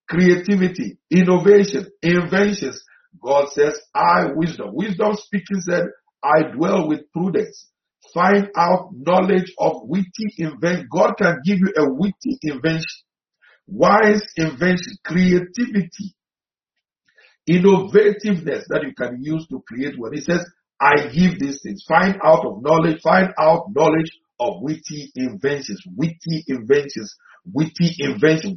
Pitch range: 155-200 Hz